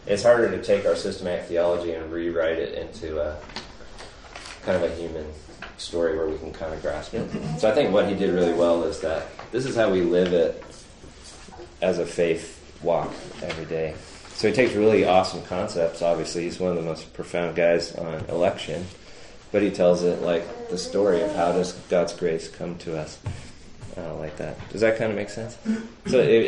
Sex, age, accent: male, 30-49, American